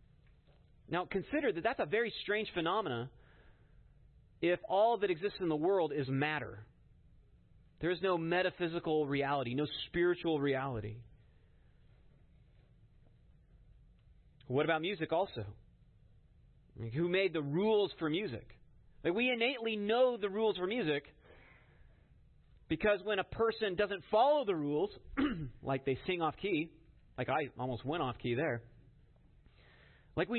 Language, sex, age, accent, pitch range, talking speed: English, male, 40-59, American, 135-205 Hz, 125 wpm